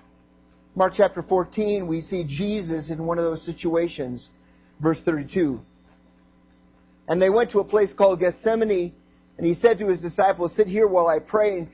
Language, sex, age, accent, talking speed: English, male, 50-69, American, 165 wpm